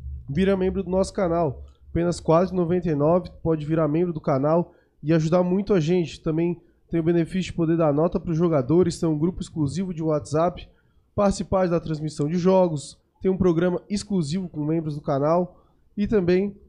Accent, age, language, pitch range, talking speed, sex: Brazilian, 20-39, Portuguese, 155-185 Hz, 180 wpm, male